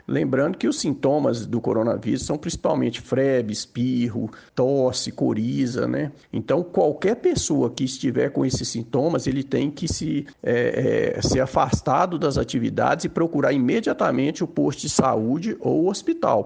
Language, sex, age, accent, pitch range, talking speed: Portuguese, male, 50-69, Brazilian, 135-180 Hz, 145 wpm